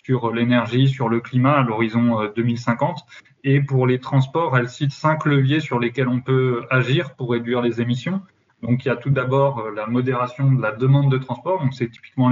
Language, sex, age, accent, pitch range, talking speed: French, male, 20-39, French, 120-135 Hz, 200 wpm